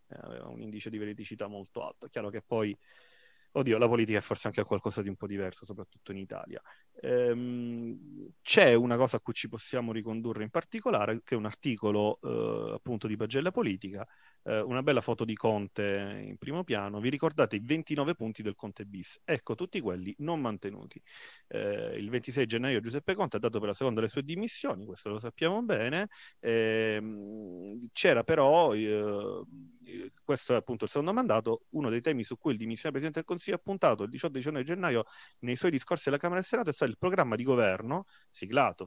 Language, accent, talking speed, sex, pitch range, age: Italian, native, 185 wpm, male, 105-130 Hz, 30-49